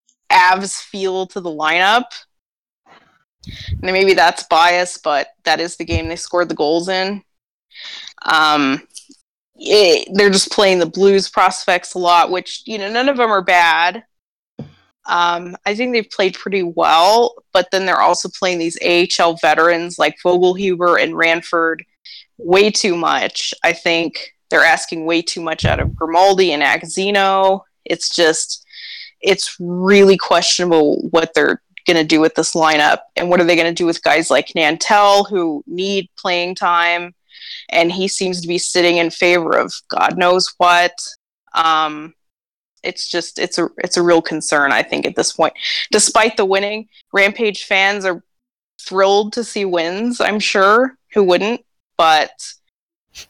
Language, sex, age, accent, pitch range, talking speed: English, female, 20-39, American, 170-200 Hz, 160 wpm